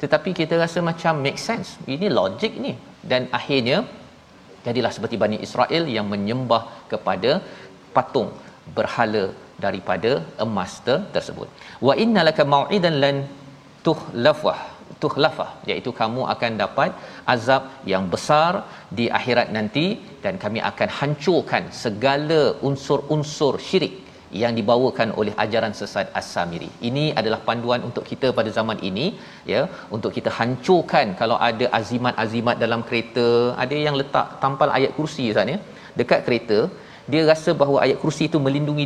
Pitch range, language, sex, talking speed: 115-150 Hz, Malayalam, male, 130 wpm